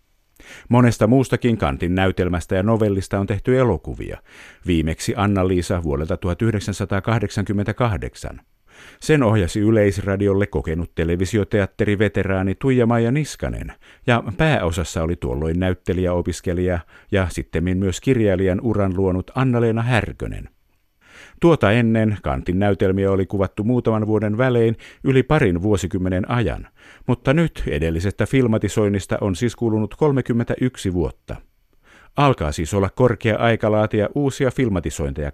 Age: 50-69